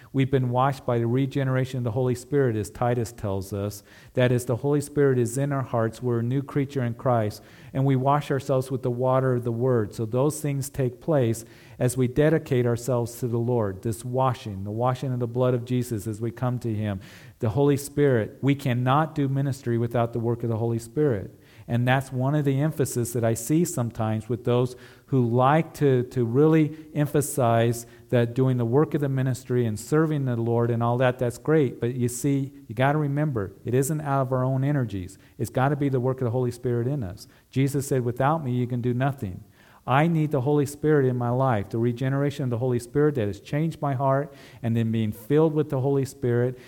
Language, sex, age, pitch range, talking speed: English, male, 40-59, 115-140 Hz, 225 wpm